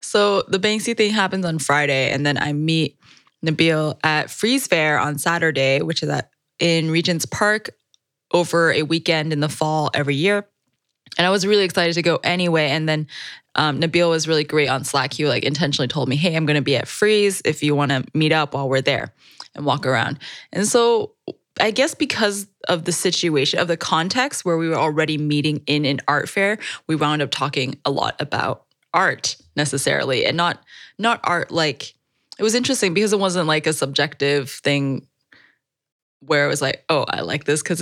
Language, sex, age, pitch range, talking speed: English, female, 10-29, 145-175 Hz, 195 wpm